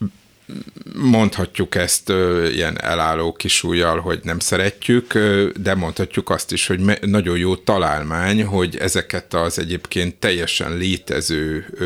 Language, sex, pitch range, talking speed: Hungarian, male, 85-105 Hz, 110 wpm